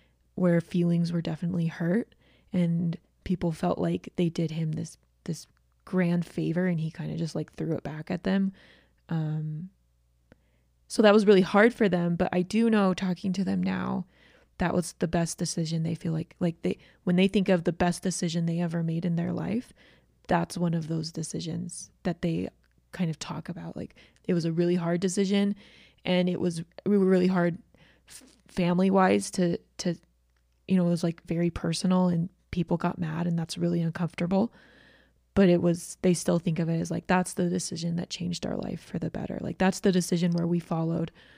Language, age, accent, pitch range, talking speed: English, 20-39, American, 165-185 Hz, 195 wpm